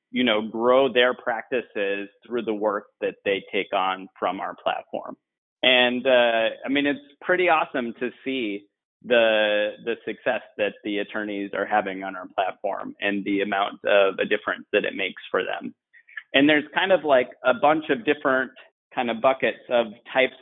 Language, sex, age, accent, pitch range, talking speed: English, male, 30-49, American, 110-135 Hz, 175 wpm